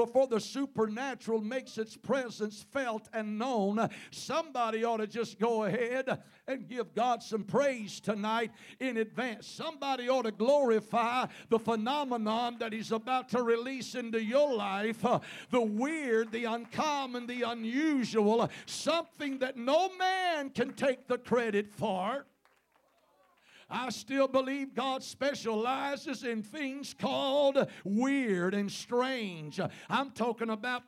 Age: 60-79